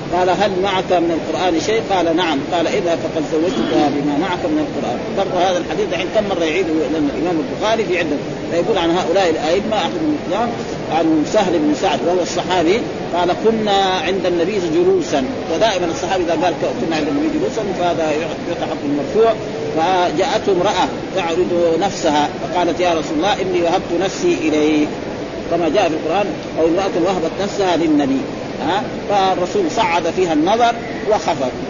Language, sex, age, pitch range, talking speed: Arabic, male, 40-59, 175-255 Hz, 155 wpm